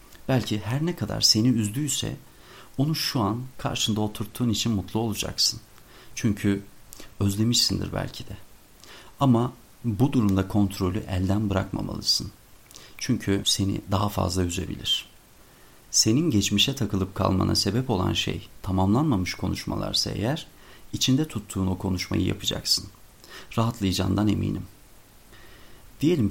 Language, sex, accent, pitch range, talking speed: Turkish, male, native, 95-120 Hz, 105 wpm